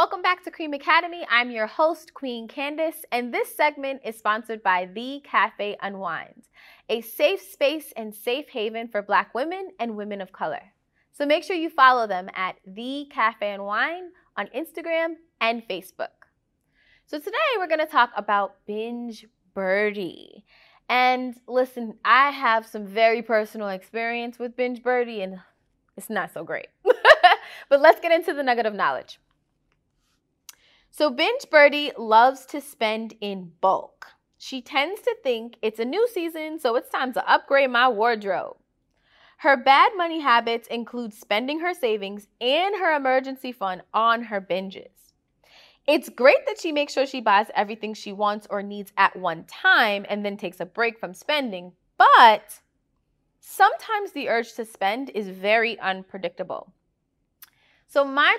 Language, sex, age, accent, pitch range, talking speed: English, female, 20-39, American, 210-305 Hz, 155 wpm